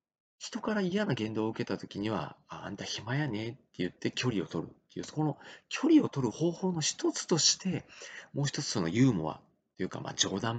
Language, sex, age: Japanese, male, 40-59